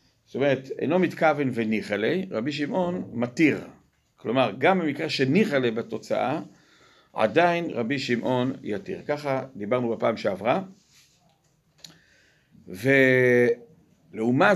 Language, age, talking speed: Hebrew, 50-69, 100 wpm